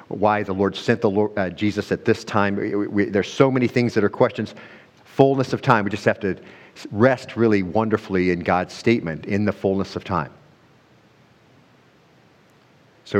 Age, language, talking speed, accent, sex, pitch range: 50-69, English, 175 wpm, American, male, 90-105 Hz